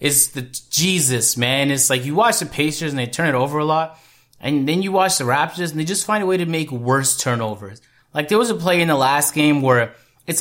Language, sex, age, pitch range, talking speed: English, male, 30-49, 130-180 Hz, 255 wpm